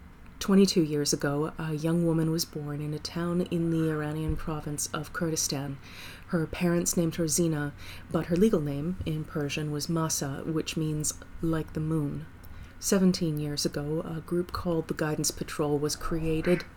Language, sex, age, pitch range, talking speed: English, female, 30-49, 150-170 Hz, 165 wpm